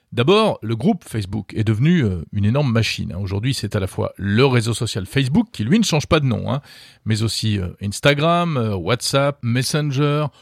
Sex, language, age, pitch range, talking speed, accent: male, French, 40-59, 110-155 Hz, 180 wpm, French